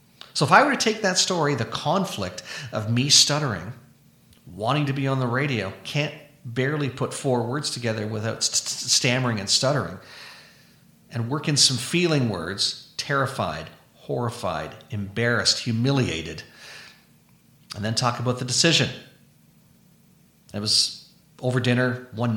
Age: 40-59